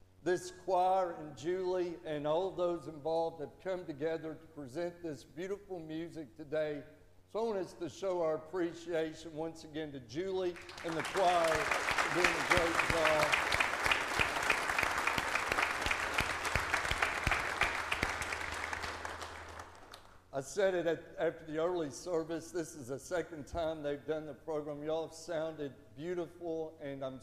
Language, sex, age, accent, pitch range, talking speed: English, male, 60-79, American, 145-165 Hz, 130 wpm